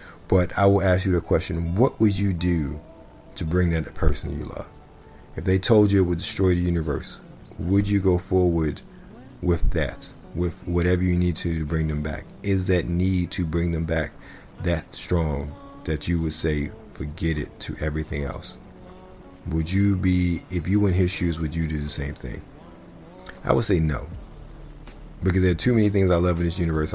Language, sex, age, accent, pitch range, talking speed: English, male, 40-59, American, 75-95 Hz, 200 wpm